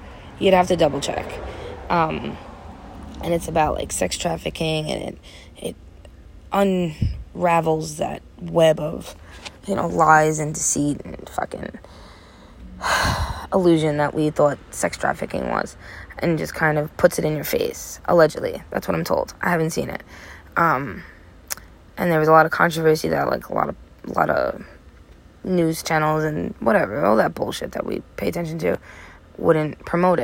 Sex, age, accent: female, 20-39, American